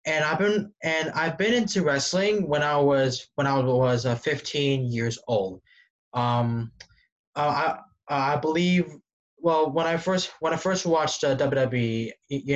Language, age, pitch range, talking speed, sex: English, 20-39, 130-165 Hz, 155 wpm, male